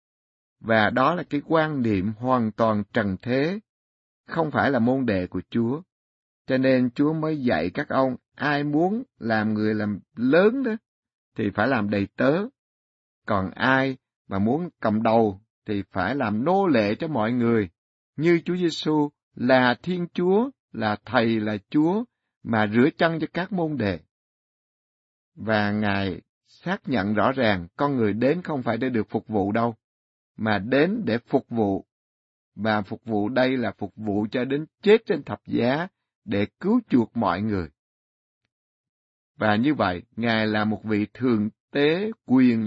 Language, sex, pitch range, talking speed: Vietnamese, male, 100-145 Hz, 165 wpm